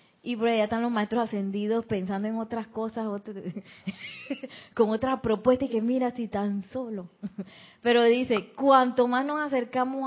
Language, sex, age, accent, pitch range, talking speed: Spanish, female, 30-49, American, 195-245 Hz, 160 wpm